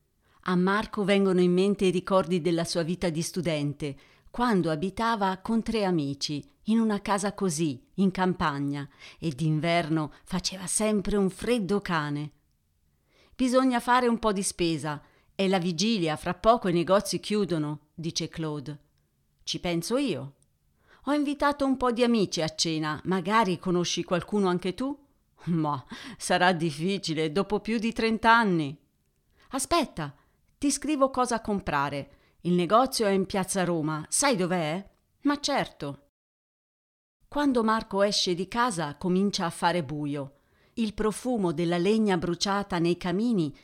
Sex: female